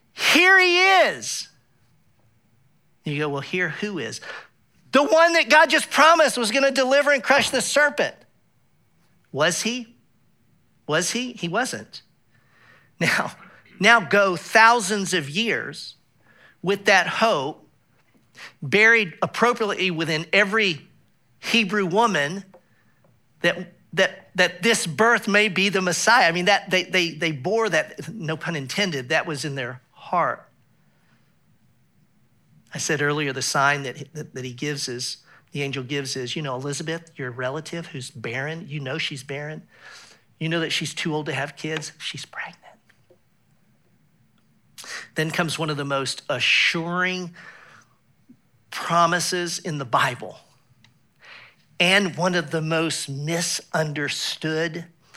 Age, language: 50-69, English